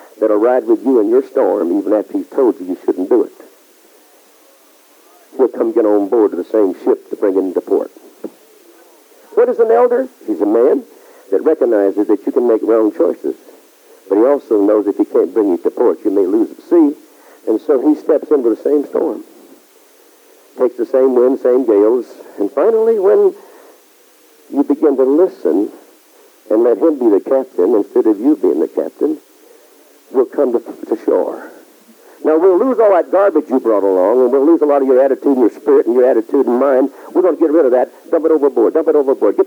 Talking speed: 210 wpm